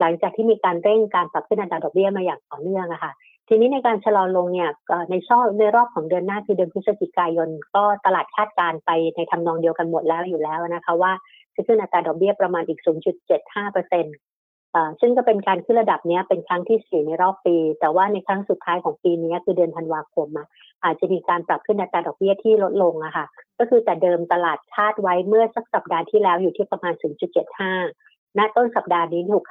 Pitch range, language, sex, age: 170-210 Hz, Thai, female, 60-79